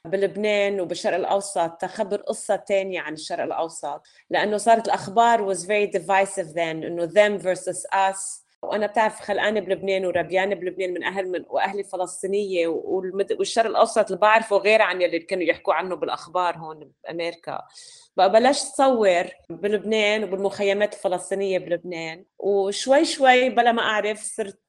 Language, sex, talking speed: Arabic, female, 140 wpm